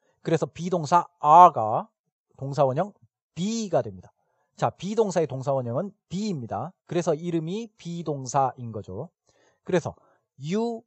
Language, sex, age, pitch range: Korean, male, 40-59, 140-200 Hz